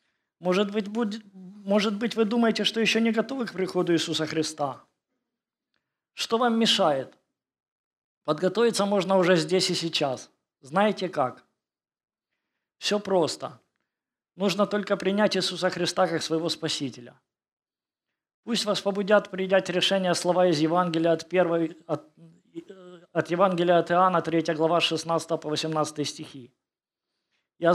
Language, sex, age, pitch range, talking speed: Ukrainian, male, 20-39, 155-195 Hz, 110 wpm